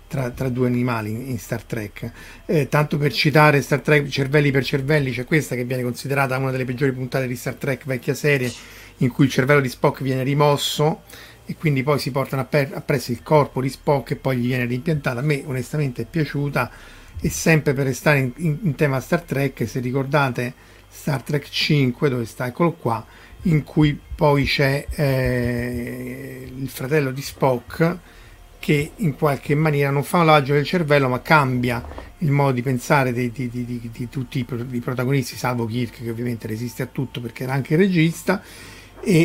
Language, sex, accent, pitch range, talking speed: Italian, male, native, 125-150 Hz, 195 wpm